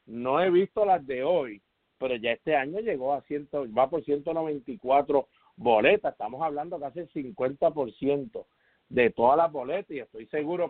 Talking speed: 185 wpm